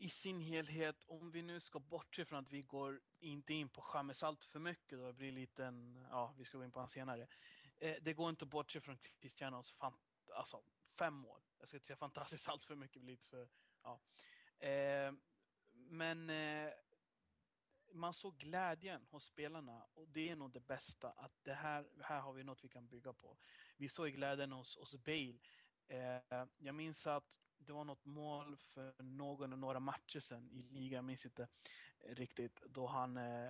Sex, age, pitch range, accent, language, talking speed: male, 30-49, 125-150 Hz, native, Swedish, 180 wpm